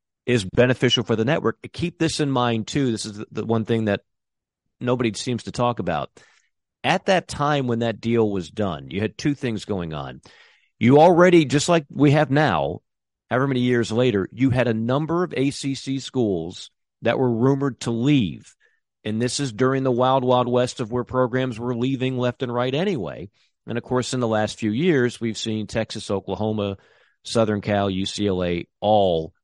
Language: English